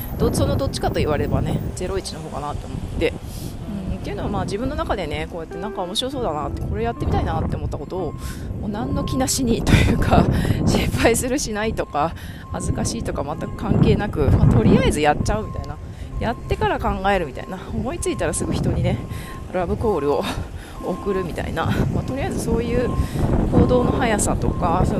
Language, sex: Japanese, female